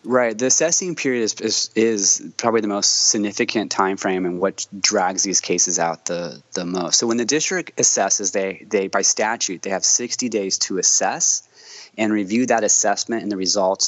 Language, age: English, 20-39